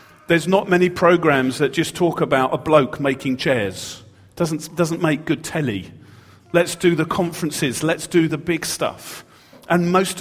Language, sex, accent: English, male, British